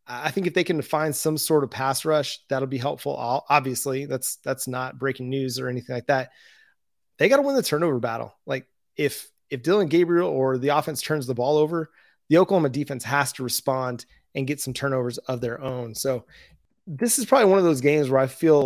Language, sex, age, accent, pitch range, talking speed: English, male, 30-49, American, 130-155 Hz, 215 wpm